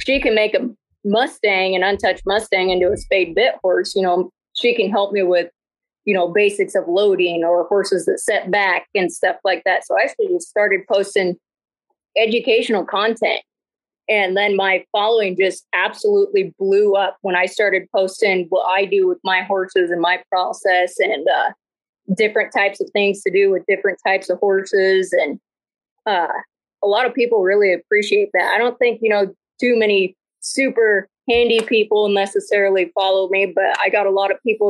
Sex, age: female, 30-49